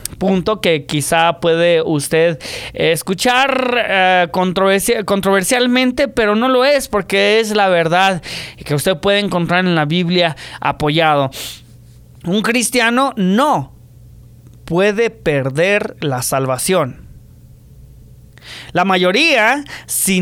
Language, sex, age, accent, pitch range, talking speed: English, male, 30-49, Mexican, 165-235 Hz, 100 wpm